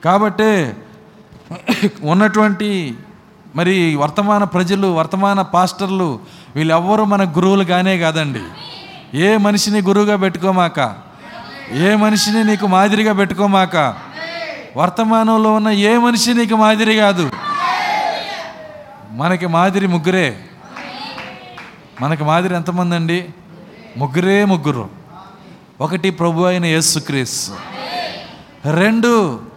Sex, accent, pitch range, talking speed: male, native, 175-230 Hz, 85 wpm